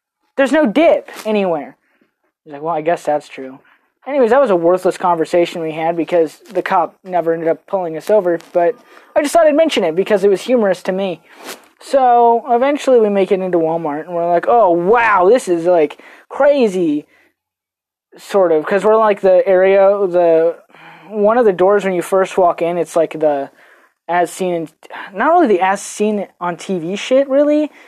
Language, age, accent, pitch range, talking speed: English, 20-39, American, 165-230 Hz, 180 wpm